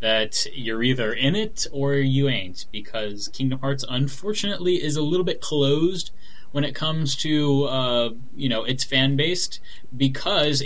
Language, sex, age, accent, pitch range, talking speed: English, male, 10-29, American, 115-140 Hz, 150 wpm